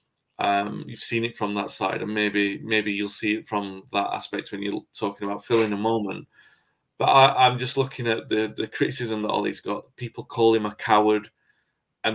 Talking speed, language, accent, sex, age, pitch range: 205 wpm, English, British, male, 30-49, 105-120 Hz